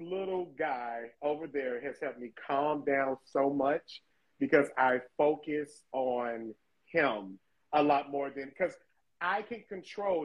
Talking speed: 140 wpm